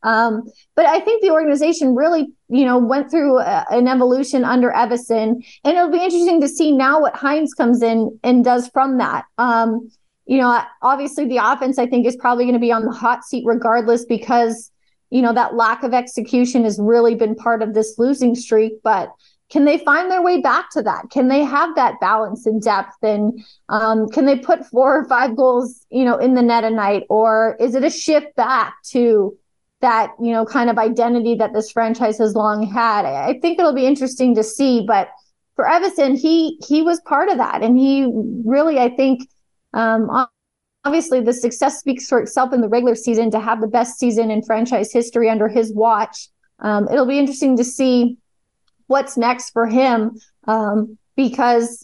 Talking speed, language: 200 wpm, English